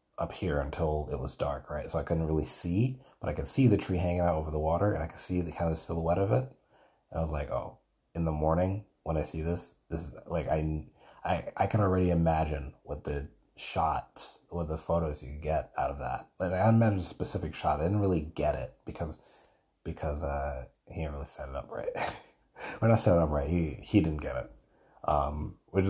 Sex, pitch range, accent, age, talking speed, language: male, 75-90 Hz, American, 30-49, 235 wpm, English